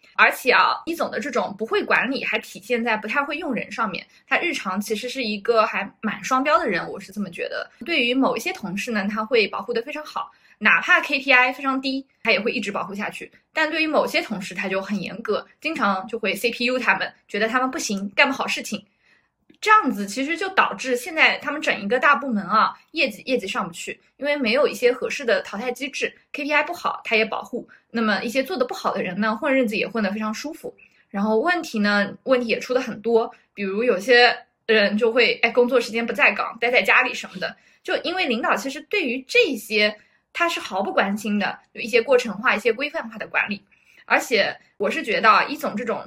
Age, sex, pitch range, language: 20-39, female, 215-285 Hz, Chinese